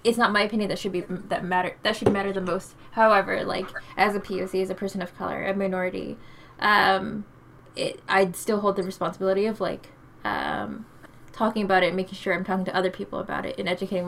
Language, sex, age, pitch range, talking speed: English, female, 10-29, 190-215 Hz, 215 wpm